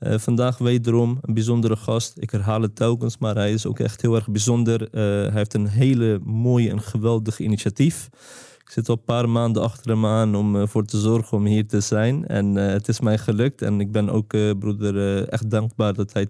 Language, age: Dutch, 20-39